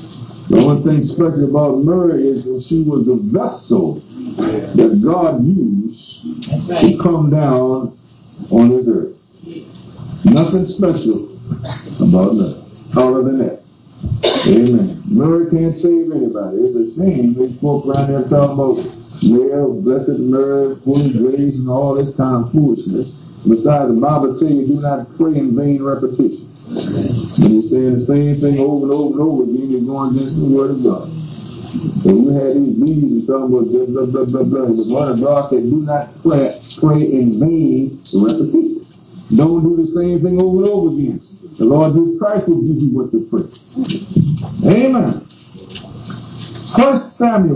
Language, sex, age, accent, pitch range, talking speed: English, male, 50-69, American, 130-170 Hz, 165 wpm